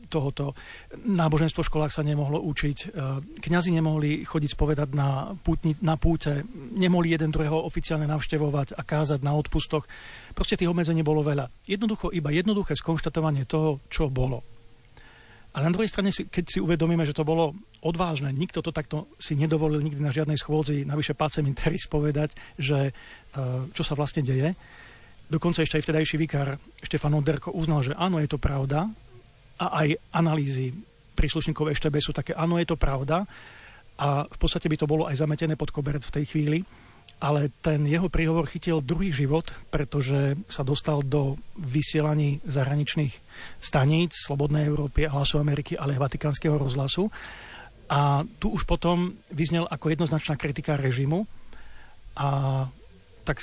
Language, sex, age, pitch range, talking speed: Slovak, male, 40-59, 140-165 Hz, 150 wpm